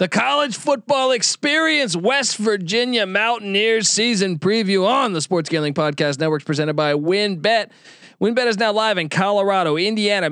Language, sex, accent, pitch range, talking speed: English, male, American, 160-210 Hz, 145 wpm